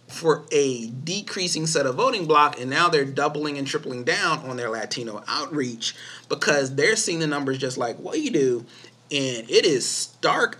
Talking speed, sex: 185 wpm, male